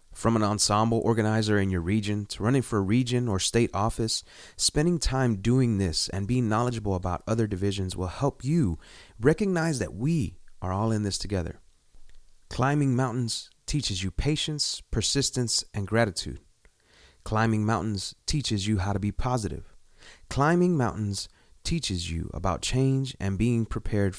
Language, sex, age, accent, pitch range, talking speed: English, male, 30-49, American, 95-130 Hz, 150 wpm